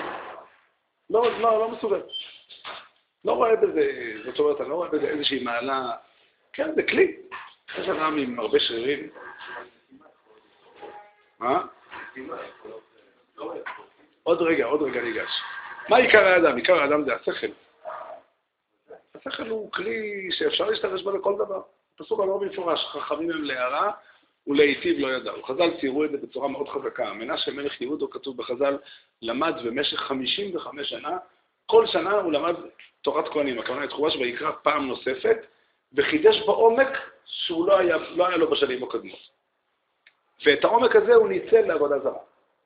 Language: Hebrew